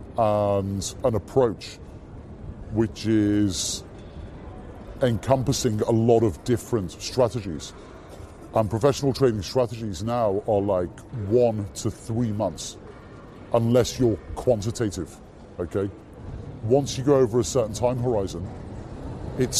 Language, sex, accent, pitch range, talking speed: English, female, British, 105-130 Hz, 105 wpm